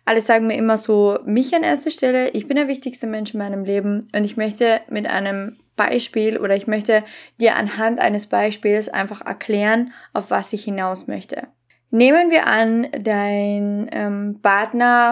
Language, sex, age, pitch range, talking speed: German, female, 20-39, 200-230 Hz, 170 wpm